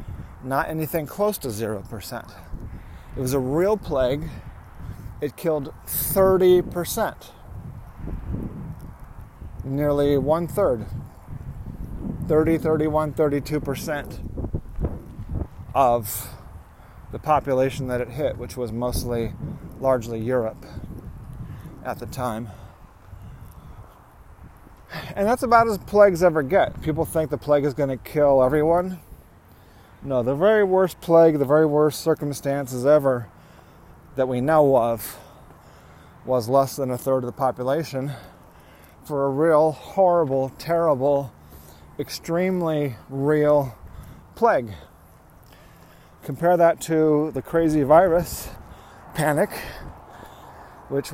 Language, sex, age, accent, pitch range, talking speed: English, male, 30-49, American, 120-155 Hz, 100 wpm